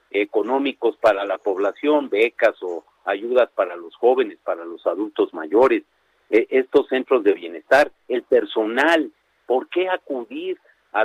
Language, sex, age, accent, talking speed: Spanish, male, 50-69, Mexican, 130 wpm